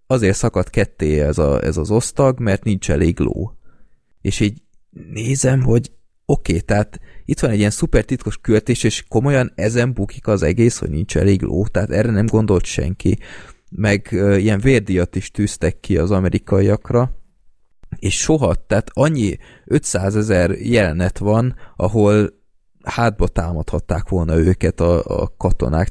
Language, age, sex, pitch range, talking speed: Hungarian, 20-39, male, 85-105 Hz, 145 wpm